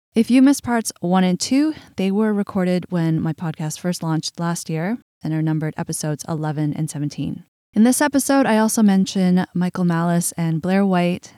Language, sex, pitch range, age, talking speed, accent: English, female, 160-195 Hz, 20-39, 185 wpm, American